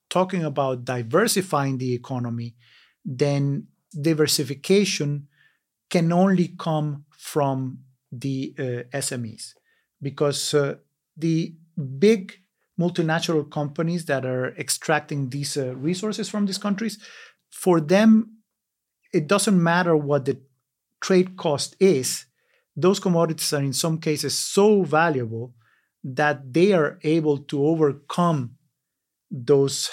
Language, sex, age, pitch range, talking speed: English, male, 50-69, 135-170 Hz, 110 wpm